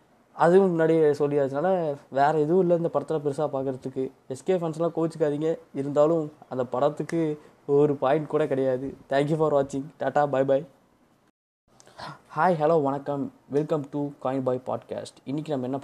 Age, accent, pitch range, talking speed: 20-39, native, 130-150 Hz, 145 wpm